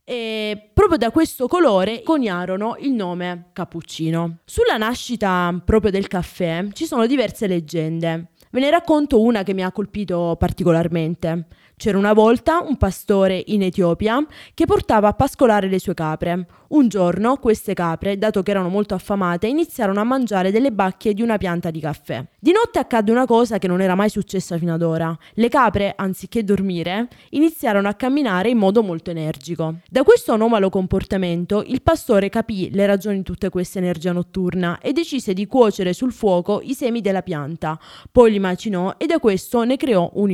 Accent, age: native, 20-39